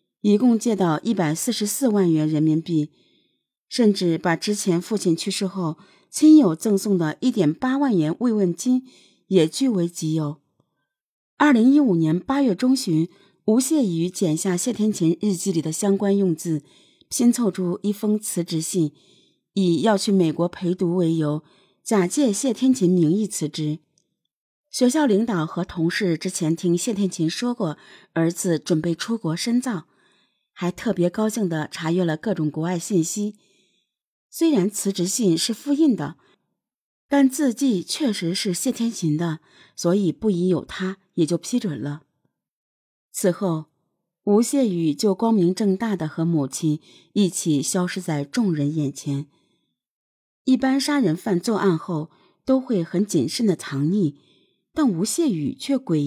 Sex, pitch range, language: female, 165-225 Hz, Chinese